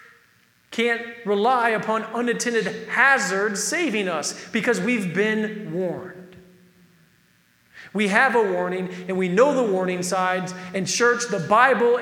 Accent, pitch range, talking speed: American, 180-230 Hz, 125 wpm